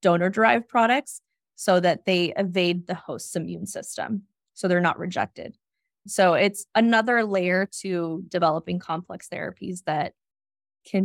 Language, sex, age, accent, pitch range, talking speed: English, female, 20-39, American, 180-205 Hz, 130 wpm